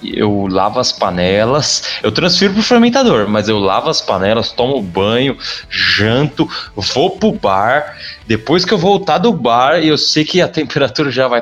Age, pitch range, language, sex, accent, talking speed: 20-39, 105-170 Hz, Portuguese, male, Brazilian, 180 wpm